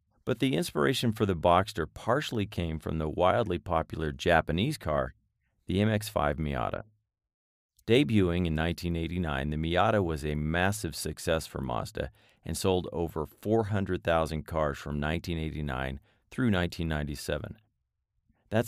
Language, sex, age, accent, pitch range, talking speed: English, male, 40-59, American, 80-105 Hz, 120 wpm